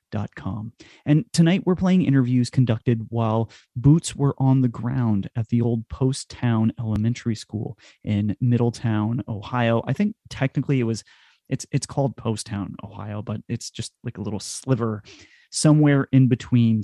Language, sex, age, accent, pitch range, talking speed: English, male, 30-49, American, 110-130 Hz, 160 wpm